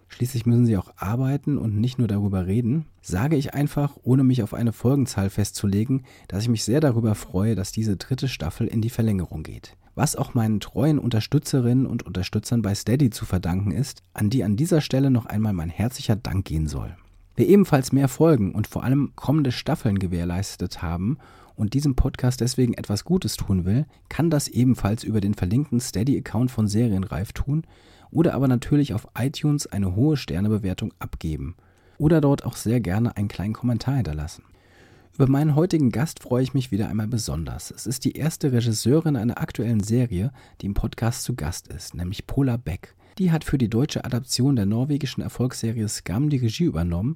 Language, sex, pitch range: German, male, 100-135 Hz